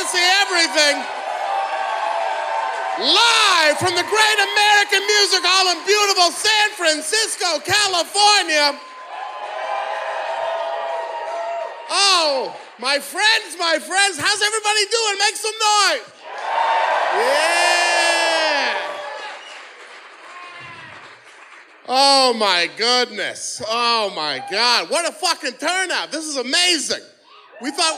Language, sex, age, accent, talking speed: English, male, 40-59, American, 90 wpm